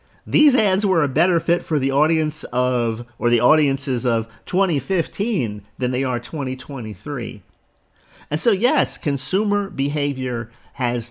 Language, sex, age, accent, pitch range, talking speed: English, male, 40-59, American, 115-150 Hz, 135 wpm